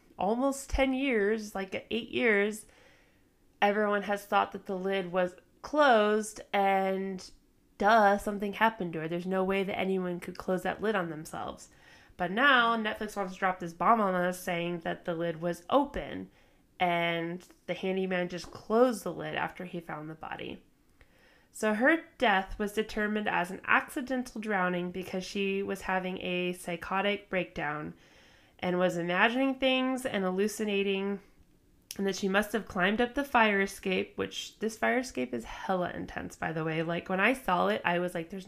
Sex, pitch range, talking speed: female, 180-220 Hz, 170 wpm